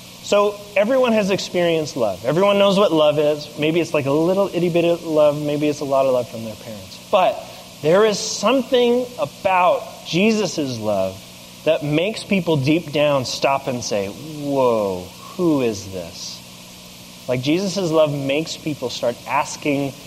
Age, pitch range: 30-49, 130-195 Hz